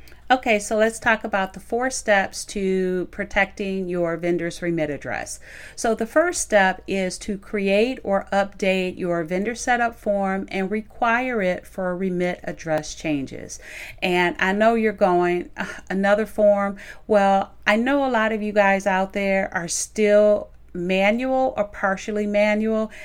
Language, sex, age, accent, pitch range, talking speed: English, female, 40-59, American, 185-230 Hz, 150 wpm